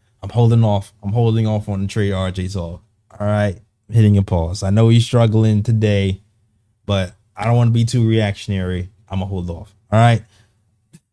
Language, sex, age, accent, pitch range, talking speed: English, male, 20-39, American, 105-130 Hz, 190 wpm